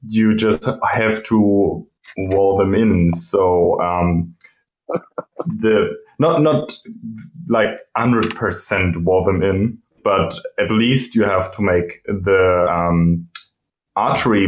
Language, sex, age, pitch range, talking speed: English, male, 20-39, 90-110 Hz, 120 wpm